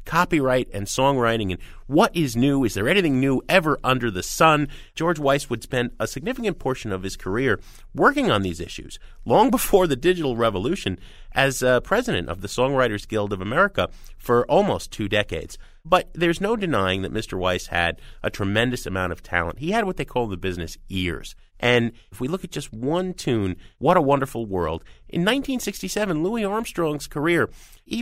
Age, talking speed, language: 30-49, 185 wpm, English